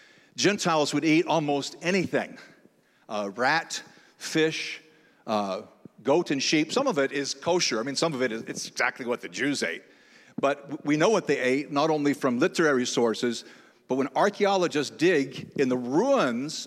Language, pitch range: English, 130-170 Hz